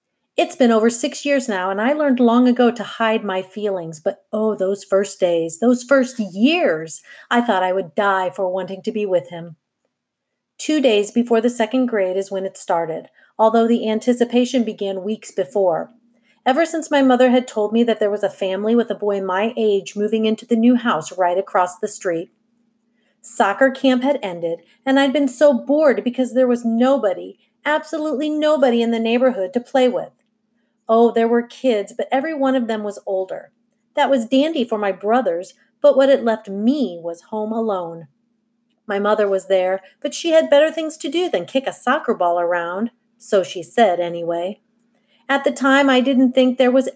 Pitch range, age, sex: 195-255 Hz, 40-59, female